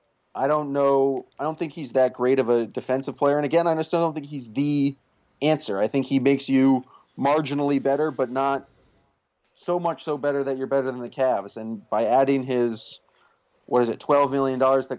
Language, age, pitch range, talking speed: English, 30-49, 120-145 Hz, 210 wpm